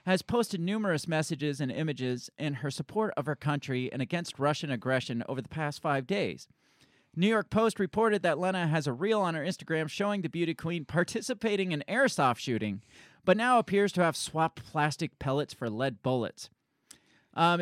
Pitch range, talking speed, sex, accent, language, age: 140-190 Hz, 180 wpm, male, American, English, 30-49